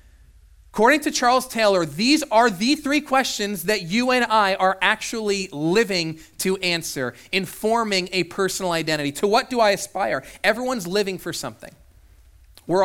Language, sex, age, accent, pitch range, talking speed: English, male, 30-49, American, 135-210 Hz, 150 wpm